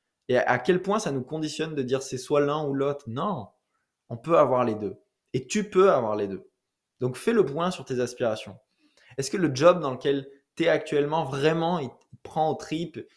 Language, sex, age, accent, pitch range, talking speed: French, male, 20-39, French, 125-170 Hz, 215 wpm